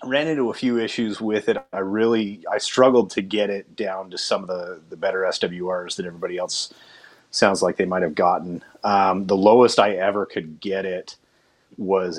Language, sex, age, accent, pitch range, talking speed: English, male, 30-49, American, 95-105 Hz, 190 wpm